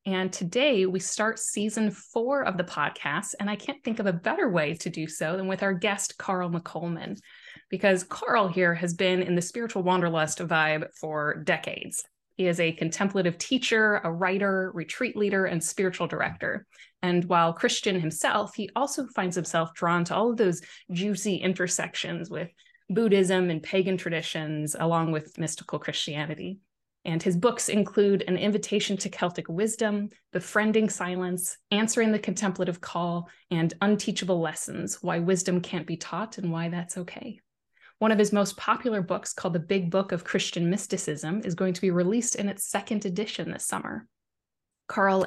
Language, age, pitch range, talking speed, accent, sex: English, 20-39, 175-210 Hz, 165 wpm, American, female